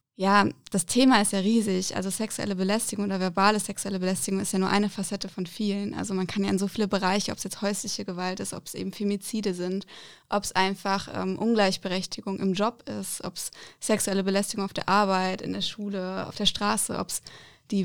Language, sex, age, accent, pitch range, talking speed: German, female, 20-39, German, 190-205 Hz, 210 wpm